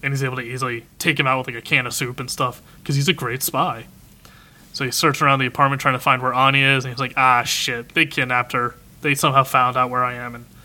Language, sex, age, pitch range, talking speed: English, male, 20-39, 130-165 Hz, 275 wpm